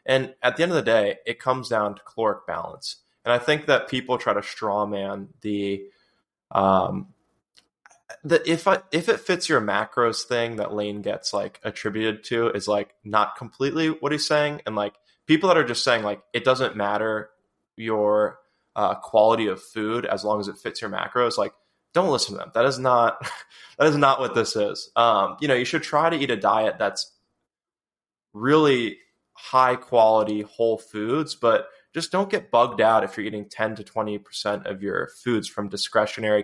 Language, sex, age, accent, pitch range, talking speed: English, male, 20-39, American, 105-145 Hz, 190 wpm